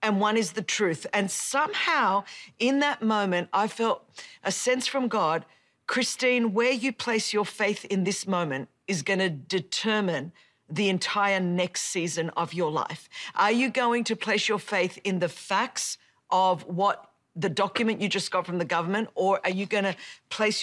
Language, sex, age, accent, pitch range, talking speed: English, female, 40-59, Australian, 185-235 Hz, 175 wpm